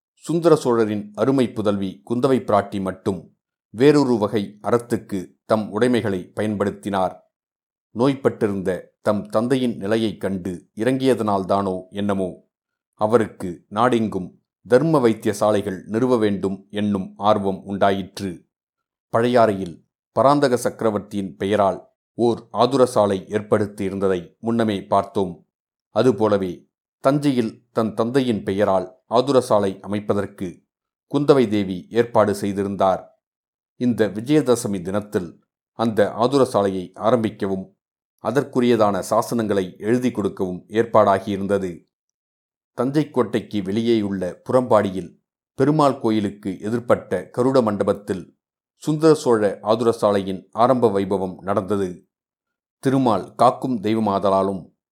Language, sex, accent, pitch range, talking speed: Tamil, male, native, 100-120 Hz, 85 wpm